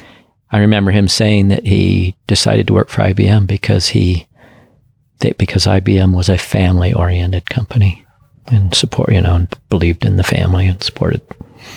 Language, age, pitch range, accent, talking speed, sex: English, 50-69, 100-125 Hz, American, 155 wpm, male